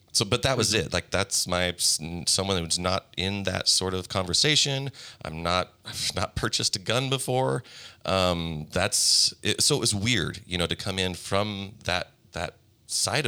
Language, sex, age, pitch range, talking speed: English, male, 30-49, 85-115 Hz, 180 wpm